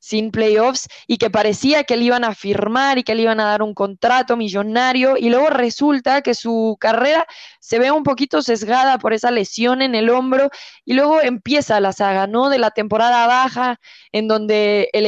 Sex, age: female, 20-39